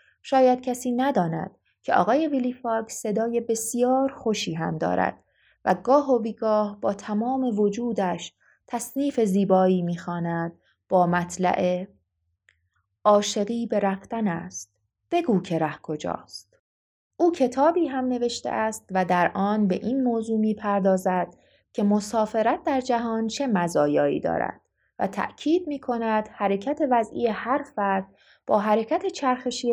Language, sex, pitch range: Persian, female, 195-245 Hz